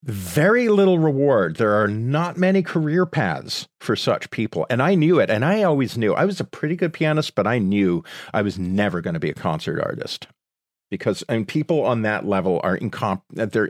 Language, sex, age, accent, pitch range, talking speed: English, male, 40-59, American, 100-150 Hz, 205 wpm